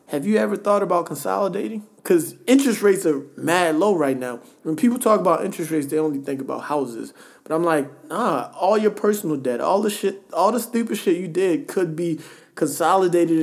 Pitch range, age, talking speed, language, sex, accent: 135-175 Hz, 20-39, 200 wpm, English, male, American